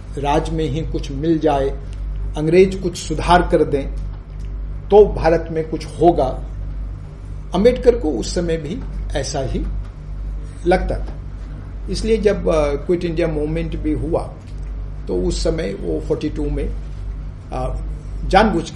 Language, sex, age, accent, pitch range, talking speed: Hindi, male, 50-69, native, 110-155 Hz, 130 wpm